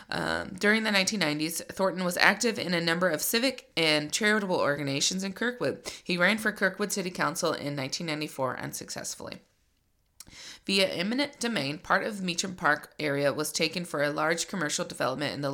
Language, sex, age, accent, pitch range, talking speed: English, female, 20-39, American, 145-195 Hz, 170 wpm